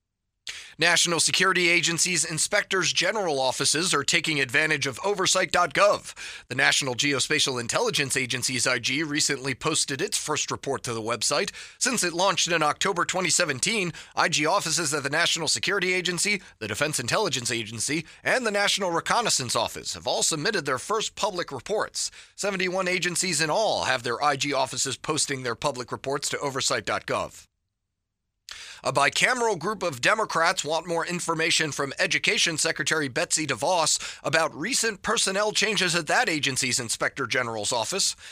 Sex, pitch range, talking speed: male, 140-180 Hz, 140 wpm